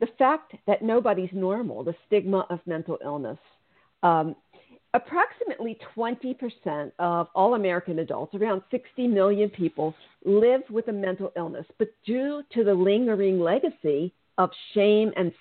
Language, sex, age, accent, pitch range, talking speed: English, female, 50-69, American, 185-250 Hz, 135 wpm